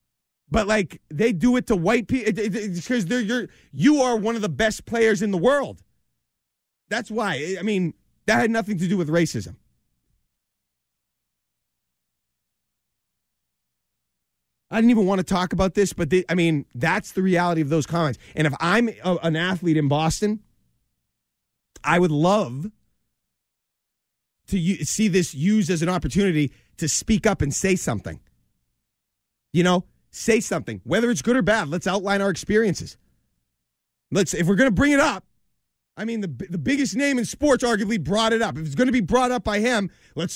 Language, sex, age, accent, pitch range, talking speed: English, male, 30-49, American, 145-225 Hz, 170 wpm